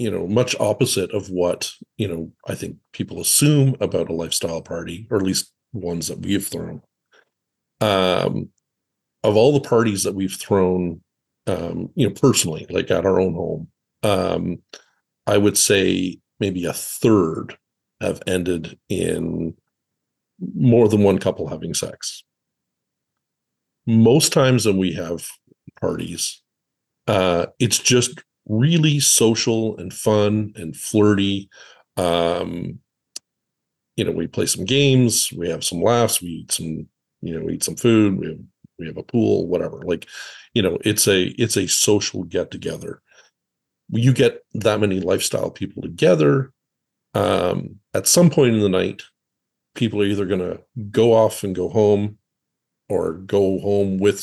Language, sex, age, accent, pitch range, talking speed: English, male, 50-69, American, 95-115 Hz, 150 wpm